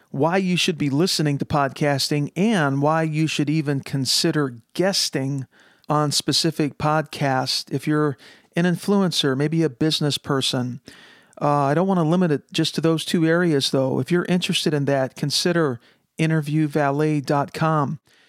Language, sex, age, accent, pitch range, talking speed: English, male, 50-69, American, 140-165 Hz, 150 wpm